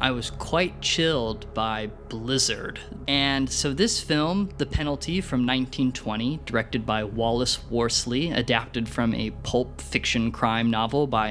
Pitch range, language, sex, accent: 115-145 Hz, English, male, American